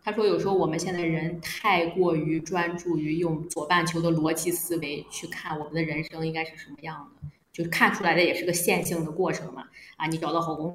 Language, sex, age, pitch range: Chinese, female, 20-39, 160-180 Hz